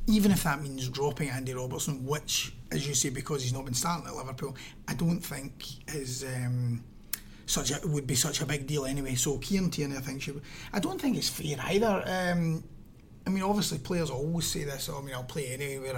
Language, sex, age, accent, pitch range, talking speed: English, male, 30-49, British, 135-165 Hz, 195 wpm